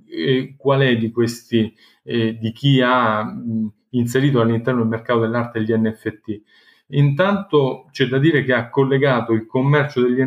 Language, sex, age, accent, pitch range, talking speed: Italian, male, 40-59, native, 115-135 Hz, 150 wpm